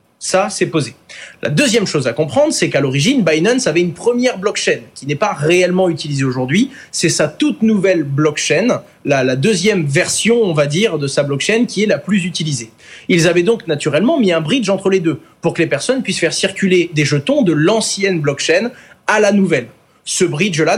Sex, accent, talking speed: male, French, 195 wpm